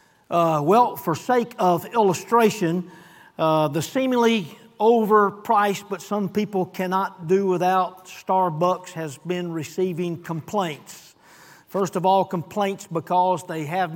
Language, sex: English, male